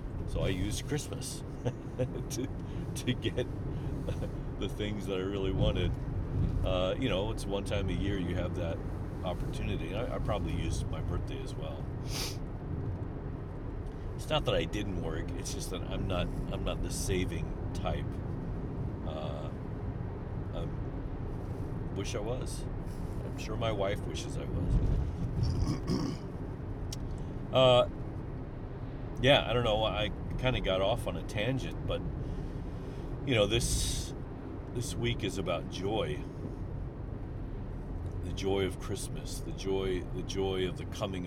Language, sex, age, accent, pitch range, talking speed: English, male, 40-59, American, 90-125 Hz, 135 wpm